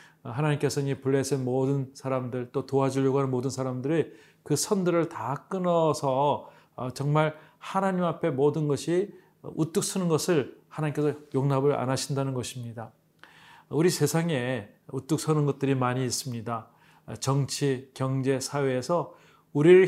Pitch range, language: 130-155 Hz, Korean